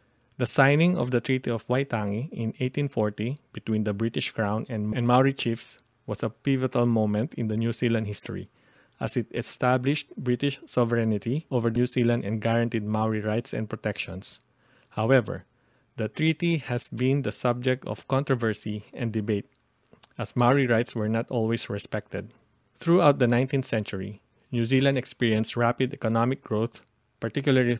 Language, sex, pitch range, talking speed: English, male, 110-125 Hz, 145 wpm